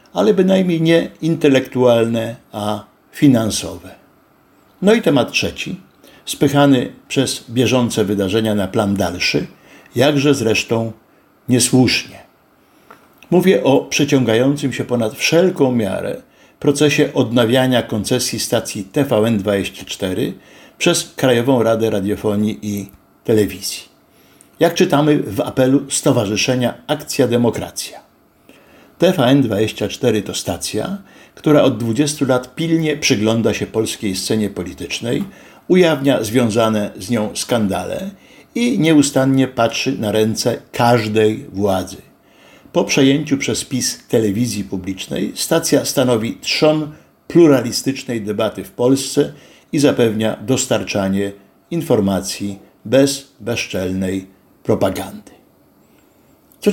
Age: 60-79